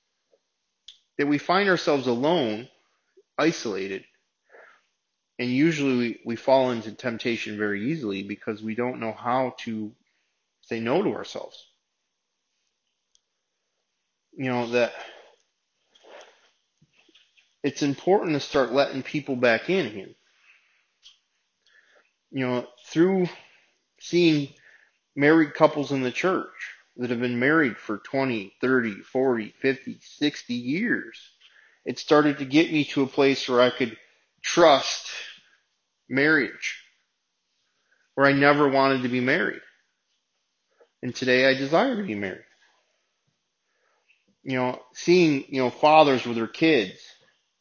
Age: 30-49